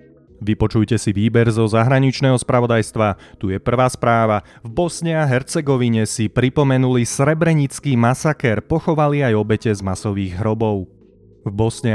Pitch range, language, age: 110-135 Hz, Slovak, 30-49